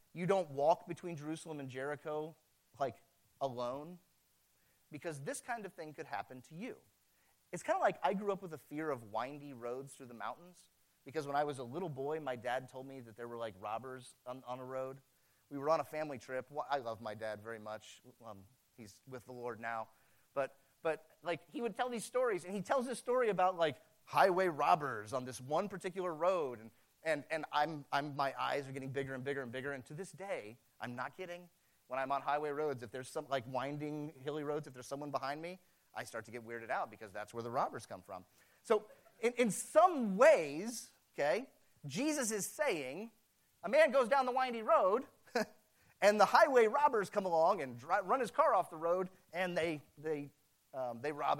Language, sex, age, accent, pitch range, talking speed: English, male, 30-49, American, 130-185 Hz, 210 wpm